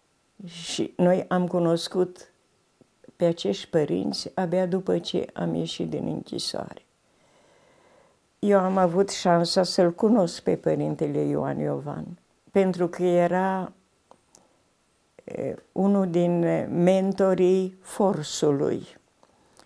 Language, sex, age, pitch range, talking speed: Romanian, female, 50-69, 165-190 Hz, 100 wpm